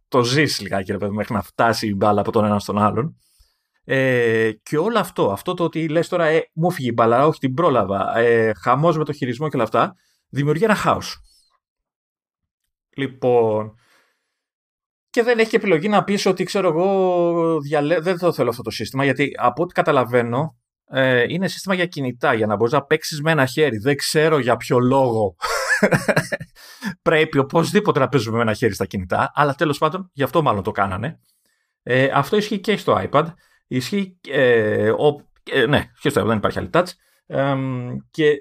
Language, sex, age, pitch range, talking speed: Greek, male, 30-49, 115-170 Hz, 180 wpm